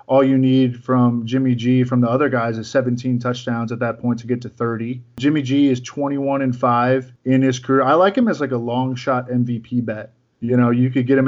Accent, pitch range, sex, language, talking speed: American, 120-140 Hz, male, English, 235 wpm